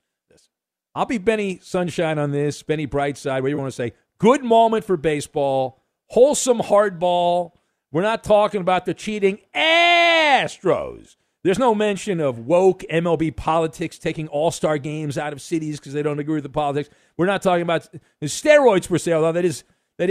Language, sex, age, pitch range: English, male, 50-69, 140-210 Hz